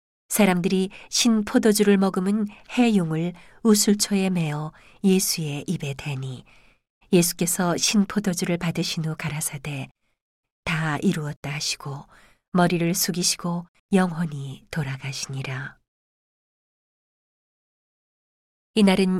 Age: 40-59